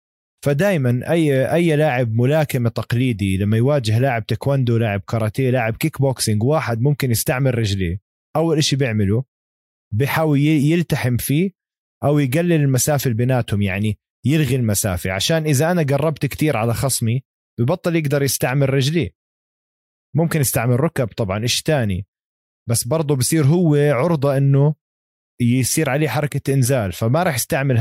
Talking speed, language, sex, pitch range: 135 wpm, Arabic, male, 115-155 Hz